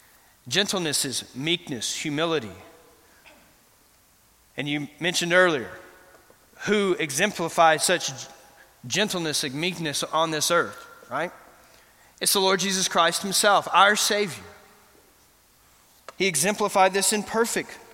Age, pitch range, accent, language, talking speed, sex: 30-49, 170-230 Hz, American, English, 105 wpm, male